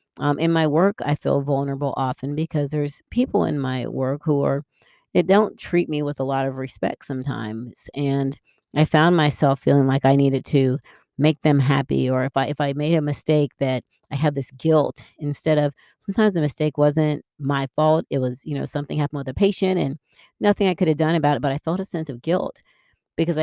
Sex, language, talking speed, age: female, English, 215 wpm, 40-59